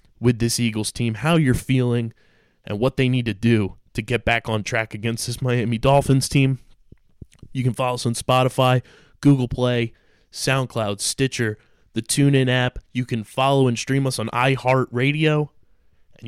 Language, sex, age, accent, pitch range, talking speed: English, male, 20-39, American, 110-135 Hz, 165 wpm